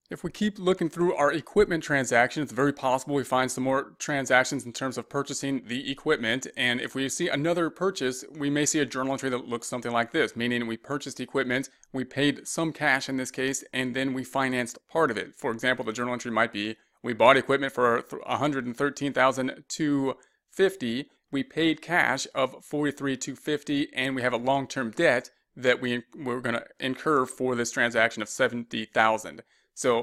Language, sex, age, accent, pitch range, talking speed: English, male, 30-49, American, 120-140 Hz, 185 wpm